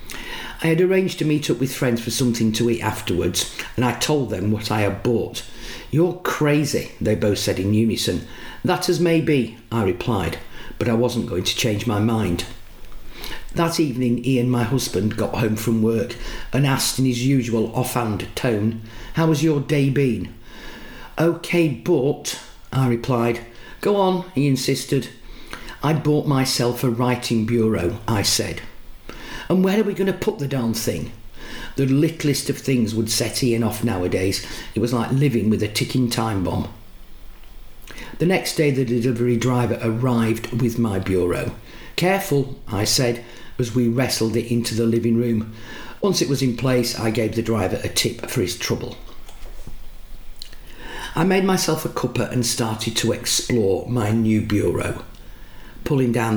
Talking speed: 165 wpm